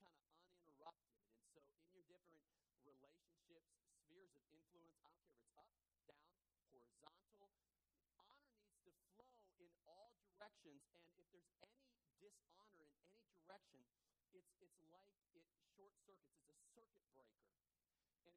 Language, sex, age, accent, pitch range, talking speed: English, male, 40-59, American, 155-195 Hz, 145 wpm